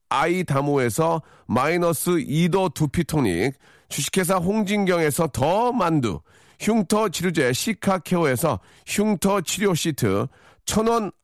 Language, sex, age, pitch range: Korean, male, 40-59, 130-205 Hz